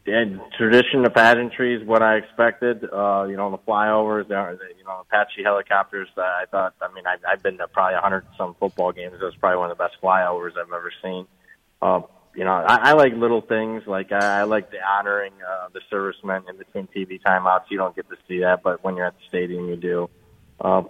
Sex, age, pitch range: male, 20-39, 100-115 Hz